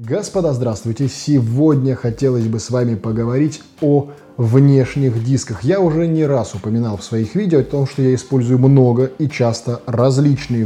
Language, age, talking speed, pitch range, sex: Russian, 20-39, 160 wpm, 115-140 Hz, male